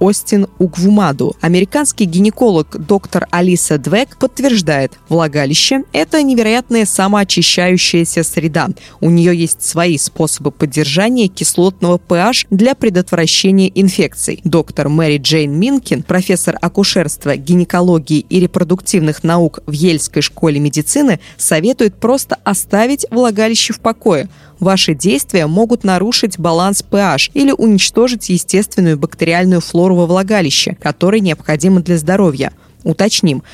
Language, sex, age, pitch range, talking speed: Russian, female, 20-39, 165-215 Hz, 110 wpm